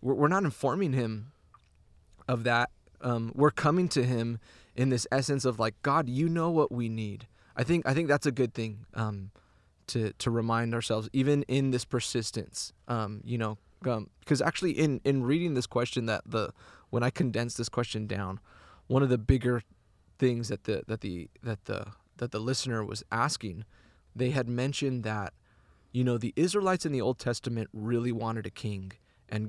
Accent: American